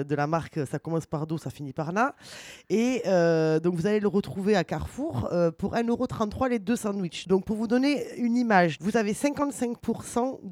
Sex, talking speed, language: female, 195 wpm, French